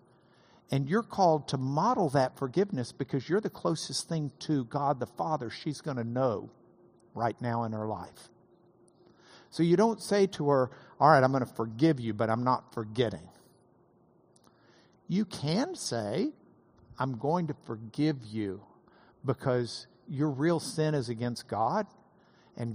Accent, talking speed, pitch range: American, 155 wpm, 120-175 Hz